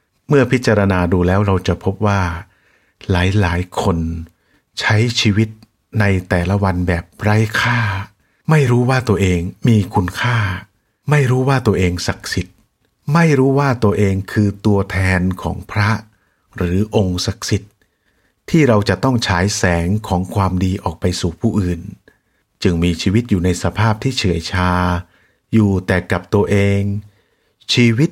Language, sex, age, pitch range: English, male, 60-79, 90-110 Hz